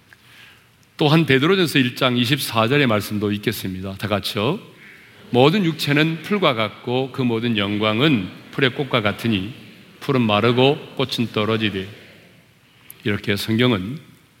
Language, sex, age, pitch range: Korean, male, 40-59, 105-140 Hz